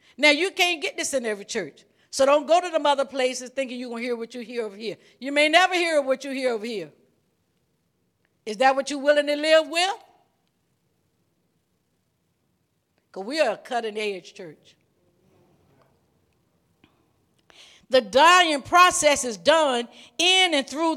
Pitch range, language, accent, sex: 235-310 Hz, English, American, female